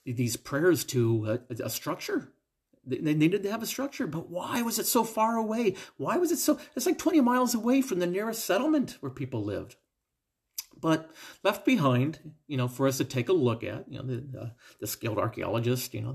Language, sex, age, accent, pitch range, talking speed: English, male, 40-59, American, 115-160 Hz, 210 wpm